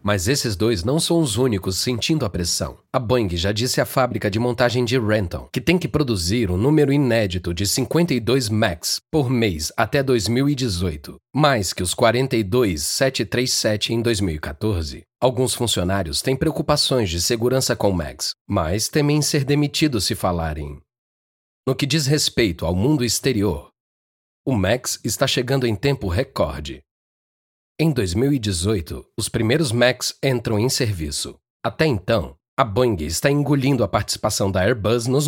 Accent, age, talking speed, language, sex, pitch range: Brazilian, 40-59, 150 wpm, Portuguese, male, 95-130 Hz